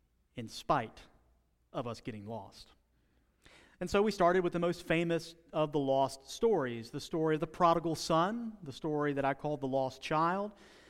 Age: 40-59